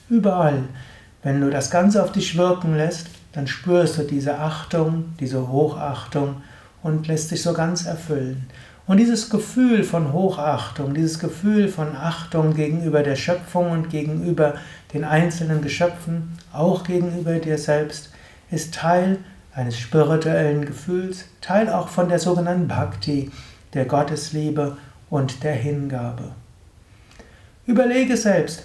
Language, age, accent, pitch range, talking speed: German, 60-79, German, 140-170 Hz, 130 wpm